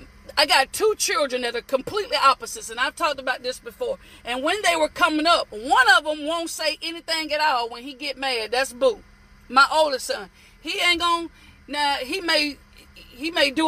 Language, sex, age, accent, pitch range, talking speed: English, female, 40-59, American, 275-360 Hz, 200 wpm